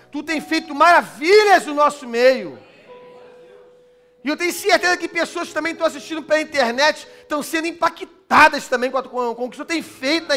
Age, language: 40-59, Portuguese